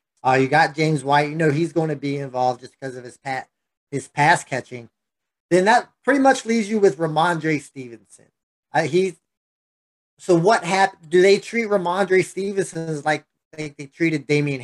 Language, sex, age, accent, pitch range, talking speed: English, male, 30-49, American, 140-175 Hz, 185 wpm